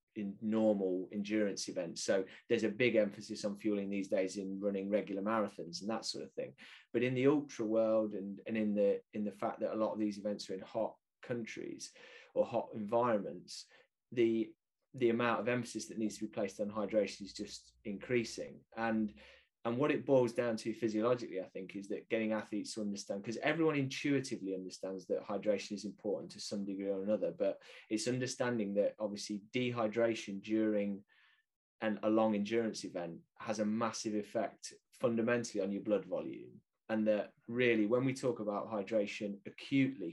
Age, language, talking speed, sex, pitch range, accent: 20-39, English, 180 wpm, male, 100-115 Hz, British